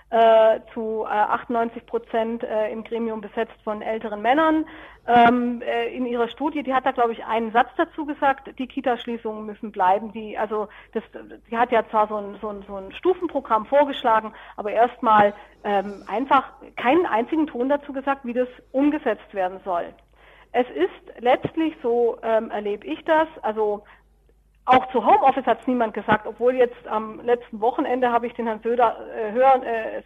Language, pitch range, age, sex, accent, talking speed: German, 215-255 Hz, 40-59, female, German, 160 wpm